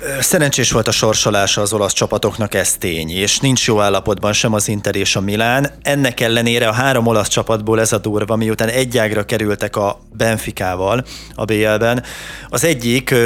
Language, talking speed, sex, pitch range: Hungarian, 170 wpm, male, 105-125 Hz